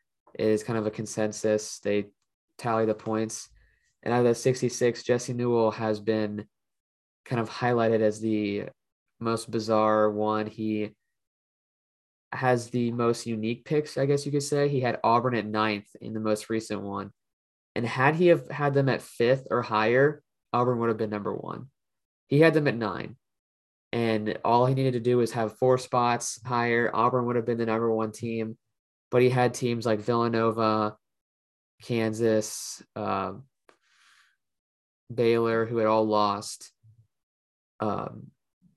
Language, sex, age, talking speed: English, male, 20-39, 155 wpm